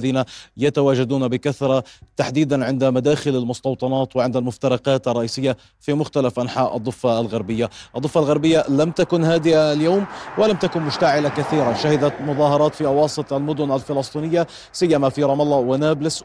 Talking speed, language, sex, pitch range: 130 wpm, Arabic, male, 135-155 Hz